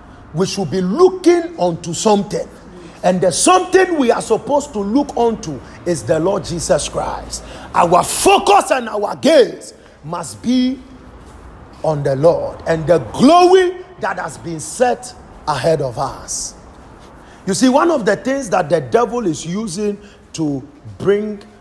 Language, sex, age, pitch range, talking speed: English, male, 50-69, 160-245 Hz, 145 wpm